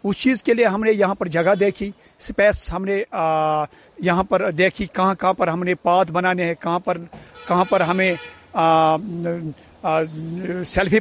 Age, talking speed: 50-69, 165 wpm